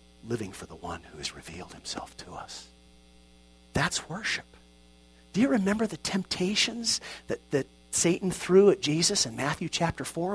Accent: American